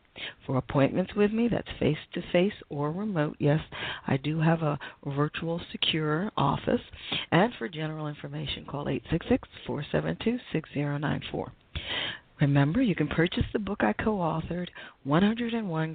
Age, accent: 40-59, American